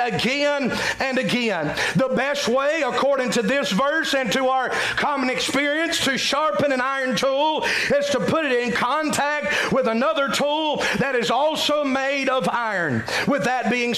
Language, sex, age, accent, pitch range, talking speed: English, male, 40-59, American, 235-280 Hz, 165 wpm